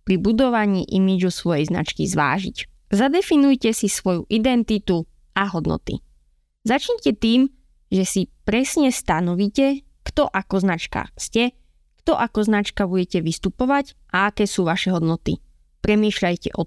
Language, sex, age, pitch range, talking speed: Slovak, female, 20-39, 185-245 Hz, 120 wpm